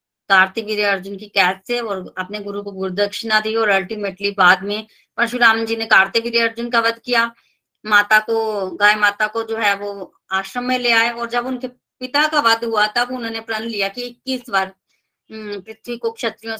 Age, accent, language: 20-39, native, Hindi